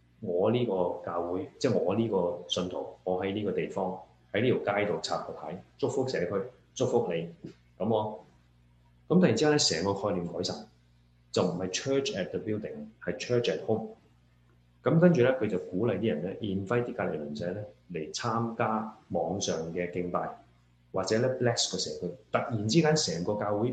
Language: Chinese